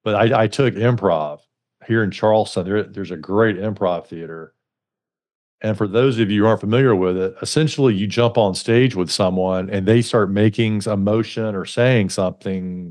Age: 50-69